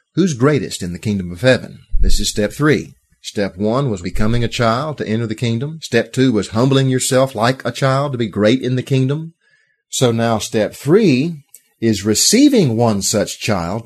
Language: English